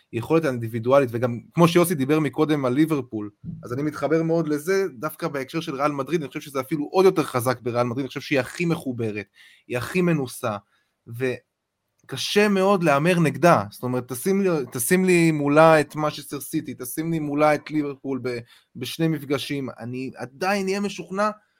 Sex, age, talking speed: male, 20-39, 170 wpm